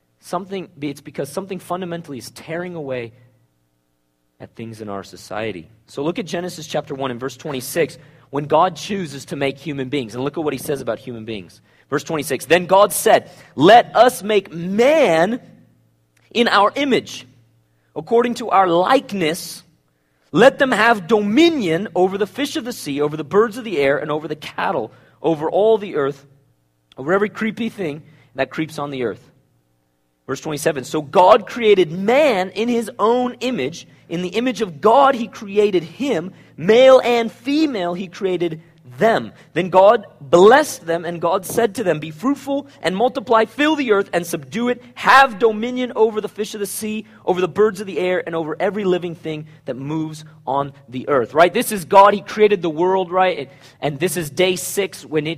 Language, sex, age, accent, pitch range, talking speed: English, male, 40-59, American, 140-220 Hz, 185 wpm